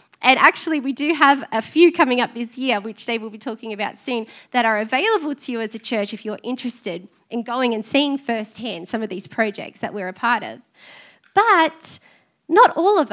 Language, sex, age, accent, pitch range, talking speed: English, female, 20-39, Australian, 205-265 Hz, 215 wpm